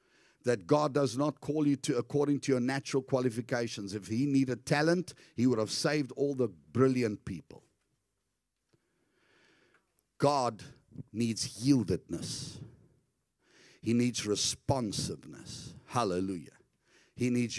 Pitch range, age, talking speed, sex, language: 115-145 Hz, 50-69, 115 wpm, male, English